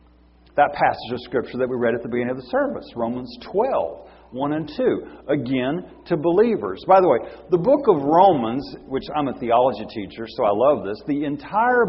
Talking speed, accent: 195 wpm, American